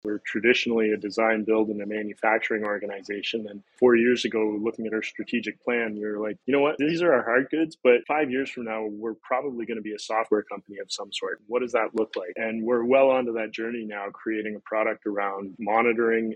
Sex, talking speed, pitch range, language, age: male, 225 wpm, 105-120 Hz, English, 20-39